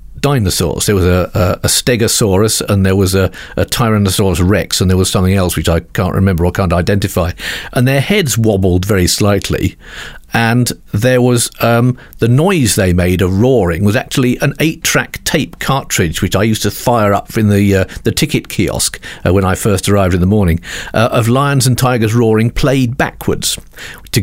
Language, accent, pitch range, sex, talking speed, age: English, British, 95-125 Hz, male, 190 wpm, 50-69